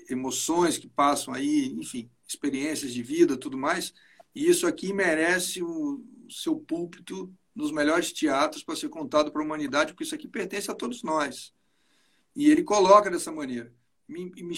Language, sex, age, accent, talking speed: Portuguese, male, 60-79, Brazilian, 165 wpm